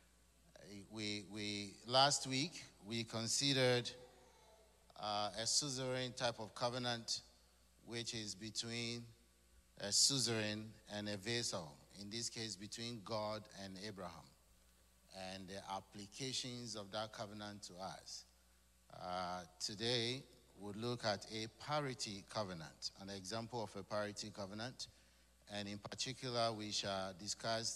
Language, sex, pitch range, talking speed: English, male, 95-120 Hz, 120 wpm